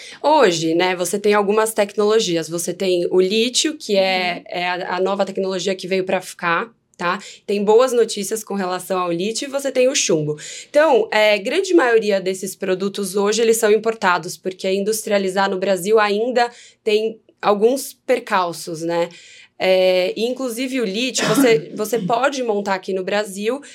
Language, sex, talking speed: Portuguese, female, 155 wpm